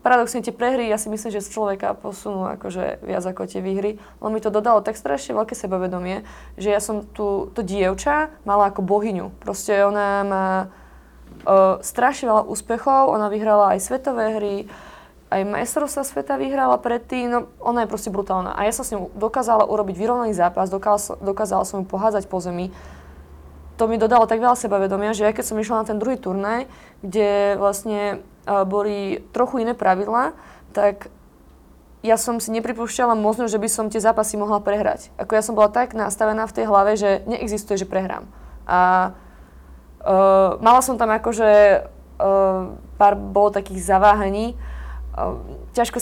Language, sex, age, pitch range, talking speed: Slovak, female, 20-39, 195-225 Hz, 165 wpm